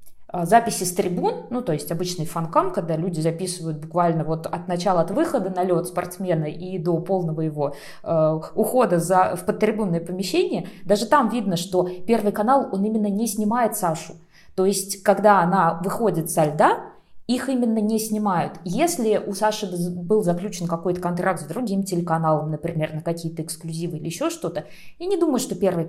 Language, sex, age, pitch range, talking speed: Russian, female, 20-39, 175-225 Hz, 170 wpm